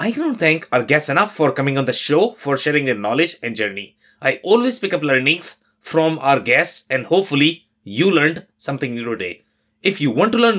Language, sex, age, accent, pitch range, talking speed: English, male, 30-49, Indian, 130-165 Hz, 215 wpm